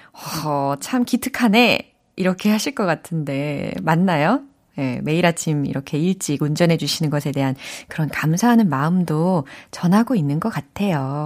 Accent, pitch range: native, 155-240 Hz